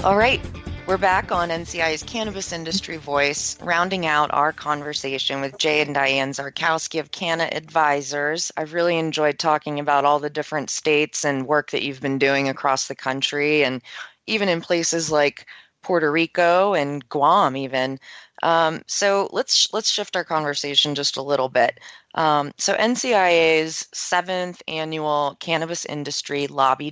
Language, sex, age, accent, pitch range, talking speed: English, female, 30-49, American, 135-165 Hz, 155 wpm